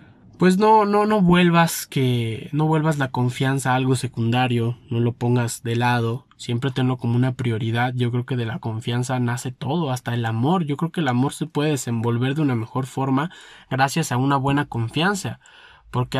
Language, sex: Spanish, male